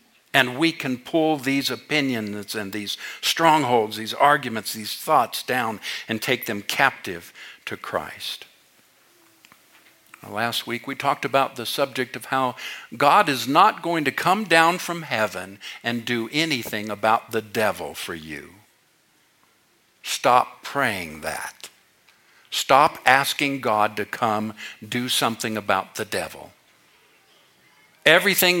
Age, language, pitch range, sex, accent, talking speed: 60-79, English, 110-145 Hz, male, American, 125 wpm